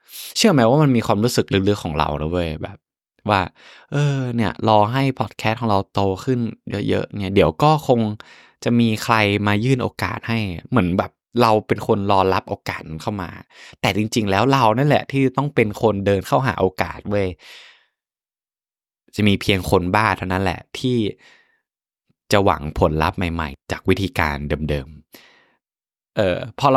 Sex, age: male, 20-39